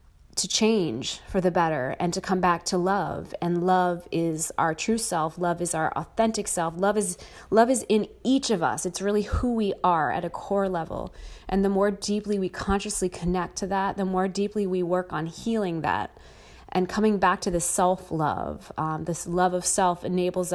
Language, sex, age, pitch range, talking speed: English, female, 30-49, 170-200 Hz, 205 wpm